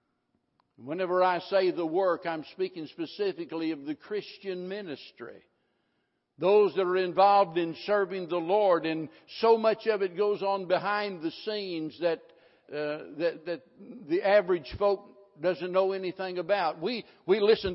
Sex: male